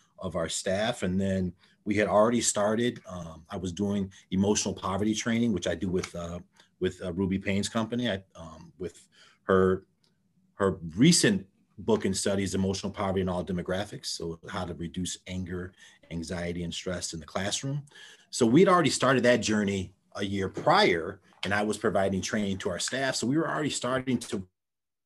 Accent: American